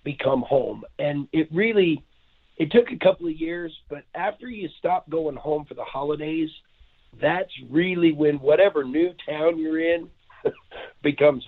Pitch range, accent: 140-175 Hz, American